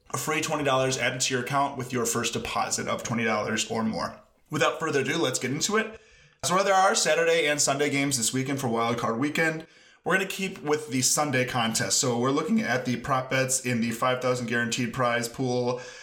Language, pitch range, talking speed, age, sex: English, 125-155 Hz, 215 wpm, 20-39, male